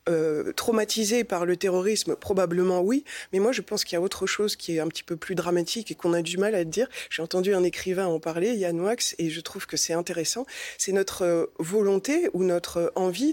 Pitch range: 170-210 Hz